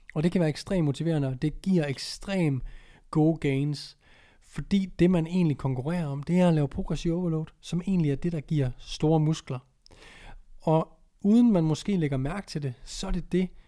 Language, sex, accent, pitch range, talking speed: Danish, male, native, 135-170 Hz, 195 wpm